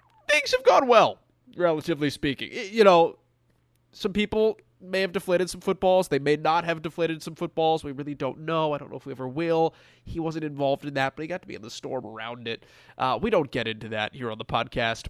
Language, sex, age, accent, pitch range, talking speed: English, male, 30-49, American, 130-165 Hz, 230 wpm